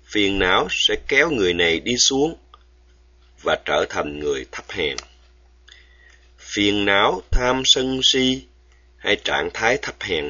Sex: male